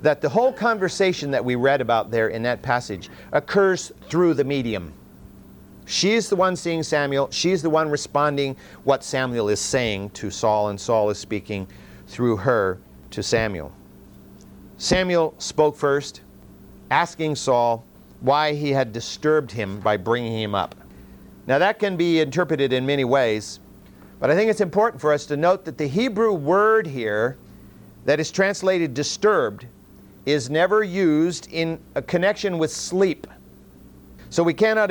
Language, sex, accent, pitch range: English, male, American, 110-165 Hz